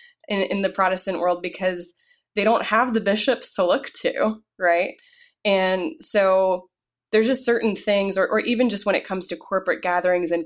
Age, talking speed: 20-39, 185 wpm